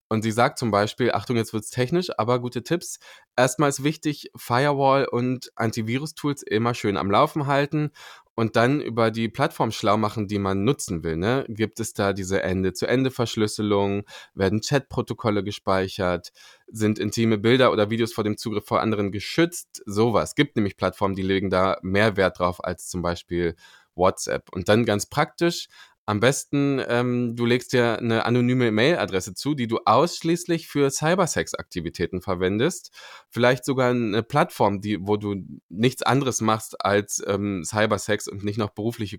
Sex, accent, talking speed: male, German, 165 wpm